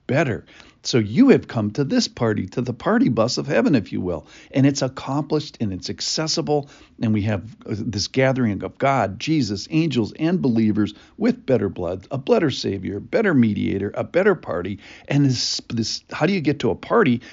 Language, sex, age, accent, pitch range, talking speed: English, male, 50-69, American, 105-140 Hz, 190 wpm